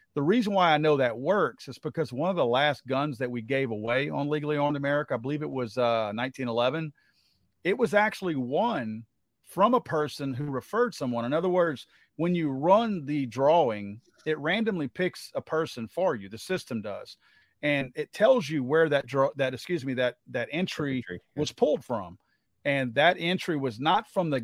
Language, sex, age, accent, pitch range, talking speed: English, male, 40-59, American, 125-155 Hz, 195 wpm